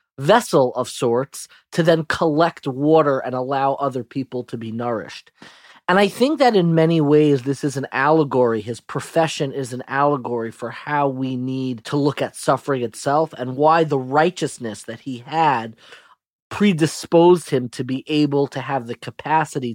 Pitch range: 130-160 Hz